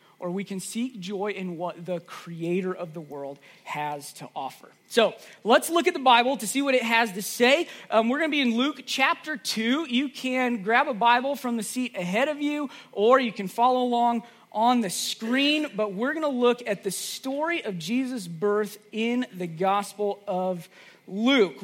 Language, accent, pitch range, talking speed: English, American, 205-265 Hz, 200 wpm